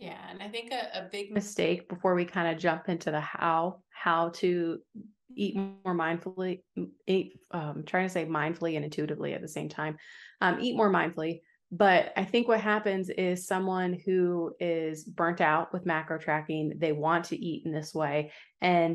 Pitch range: 160-185 Hz